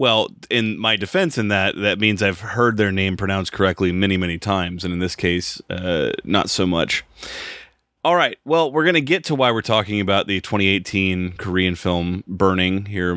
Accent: American